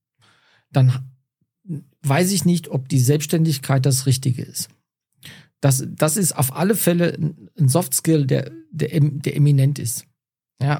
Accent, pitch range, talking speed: German, 130-165 Hz, 140 wpm